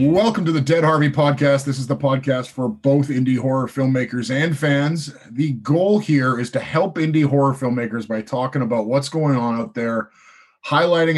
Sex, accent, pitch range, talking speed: male, American, 120-150 Hz, 190 wpm